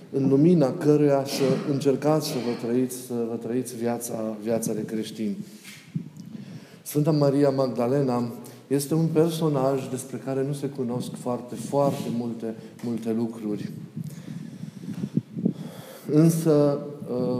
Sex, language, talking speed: male, Romanian, 110 wpm